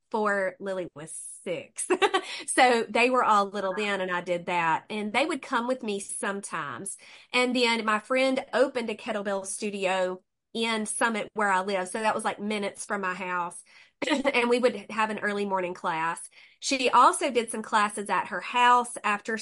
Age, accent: 30-49, American